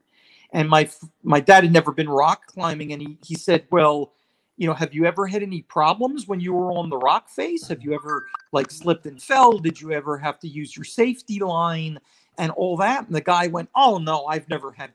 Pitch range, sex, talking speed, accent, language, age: 145-185 Hz, male, 230 wpm, American, English, 40-59